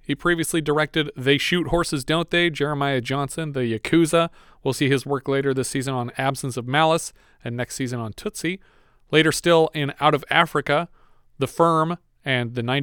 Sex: male